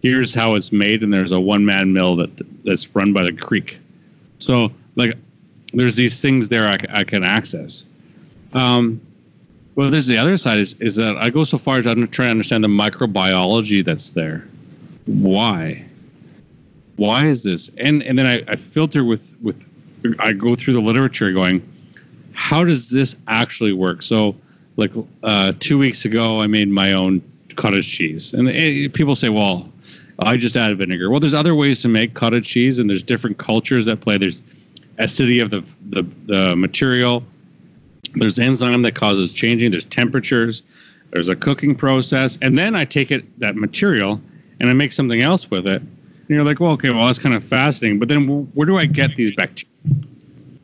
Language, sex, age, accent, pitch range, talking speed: English, male, 40-59, American, 105-140 Hz, 185 wpm